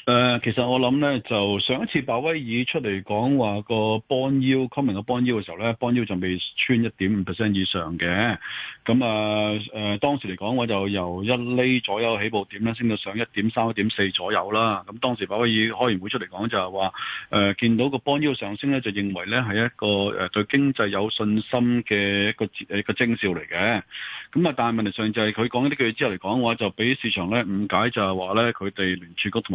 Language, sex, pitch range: Chinese, male, 100-120 Hz